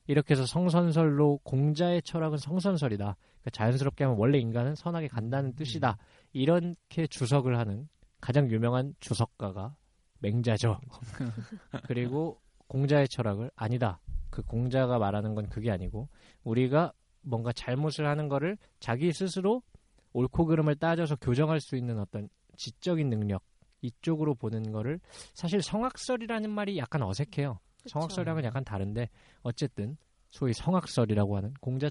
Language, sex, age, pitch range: Korean, male, 20-39, 110-150 Hz